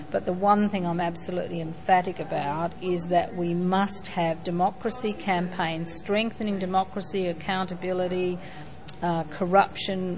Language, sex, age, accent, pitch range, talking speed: English, female, 50-69, Australian, 180-210 Hz, 120 wpm